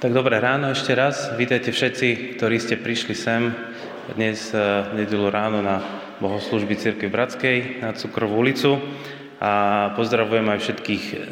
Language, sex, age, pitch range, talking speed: Slovak, male, 20-39, 105-125 Hz, 135 wpm